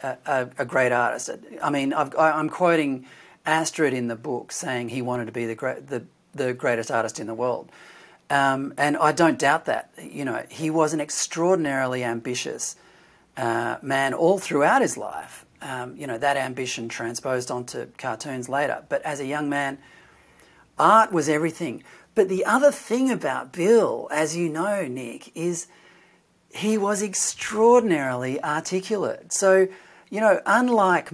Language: English